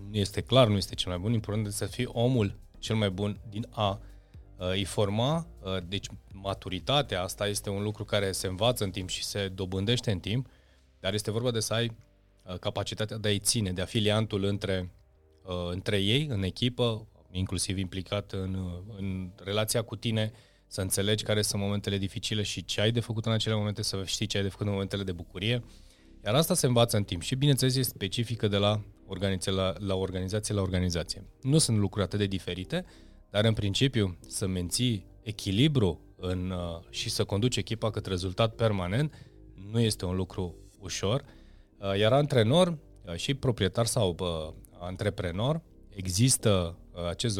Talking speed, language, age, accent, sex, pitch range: 170 wpm, Romanian, 20-39, native, male, 95-115 Hz